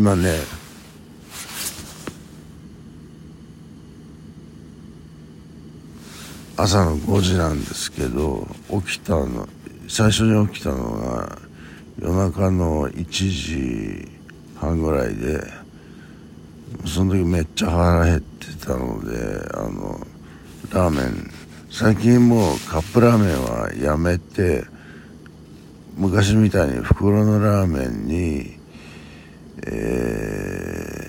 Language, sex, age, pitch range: Japanese, male, 60-79, 75-95 Hz